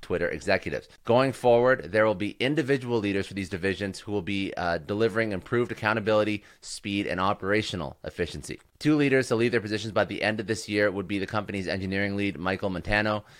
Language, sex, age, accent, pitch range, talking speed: English, male, 30-49, American, 90-115 Hz, 195 wpm